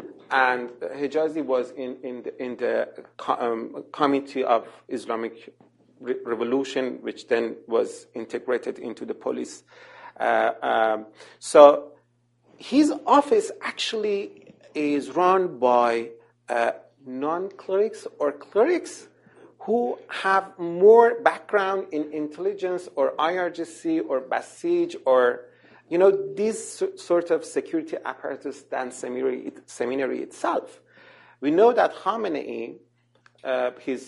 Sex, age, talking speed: male, 40-59, 105 wpm